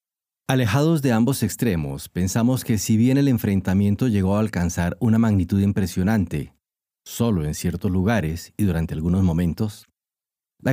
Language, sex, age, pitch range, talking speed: Spanish, male, 40-59, 90-120 Hz, 140 wpm